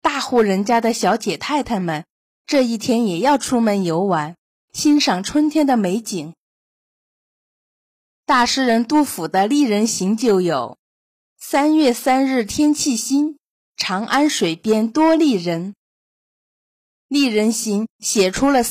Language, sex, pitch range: Chinese, female, 200-275 Hz